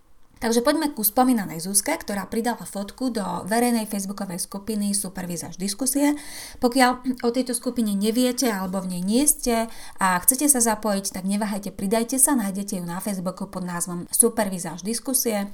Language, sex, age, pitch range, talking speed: Slovak, female, 30-49, 180-235 Hz, 155 wpm